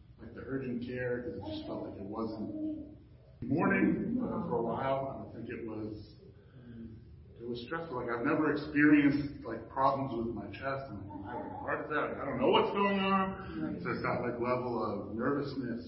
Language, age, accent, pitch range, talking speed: English, 40-59, American, 115-150 Hz, 185 wpm